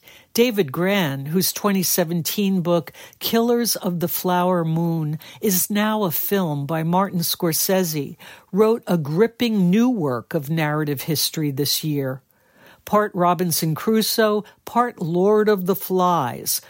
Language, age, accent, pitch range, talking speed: English, 60-79, American, 160-205 Hz, 125 wpm